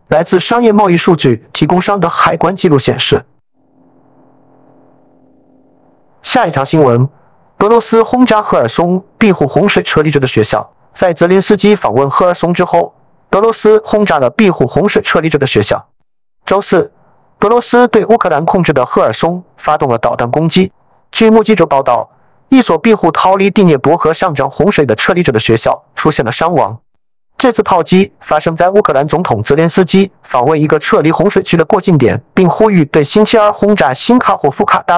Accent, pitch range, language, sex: native, 150-210 Hz, Chinese, male